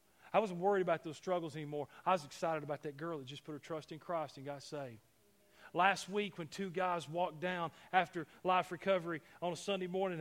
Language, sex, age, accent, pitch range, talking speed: English, male, 40-59, American, 155-205 Hz, 215 wpm